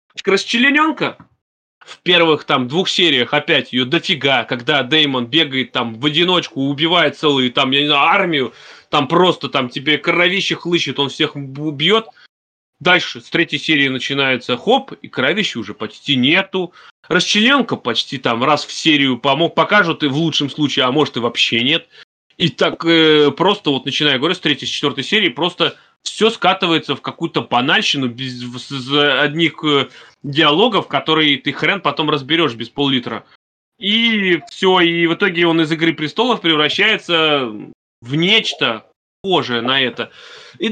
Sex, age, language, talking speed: male, 30-49, Russian, 150 wpm